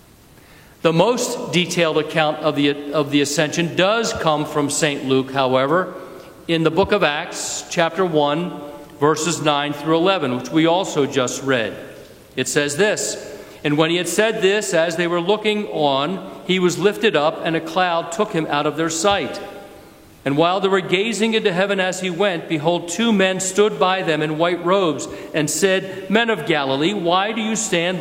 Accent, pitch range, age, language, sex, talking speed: American, 150-190 Hz, 50-69, English, male, 180 wpm